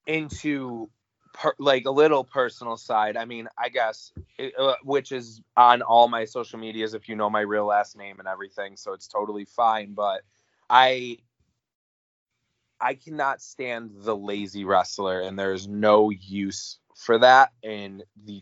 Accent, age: American, 20-39